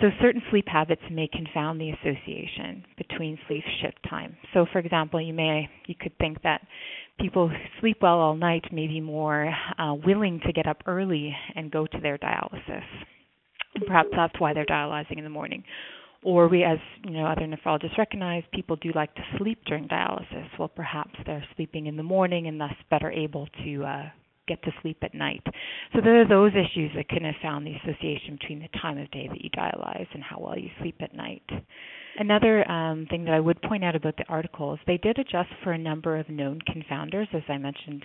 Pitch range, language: 150-180 Hz, English